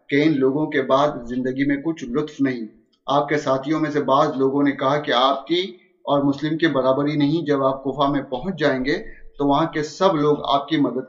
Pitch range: 135-155 Hz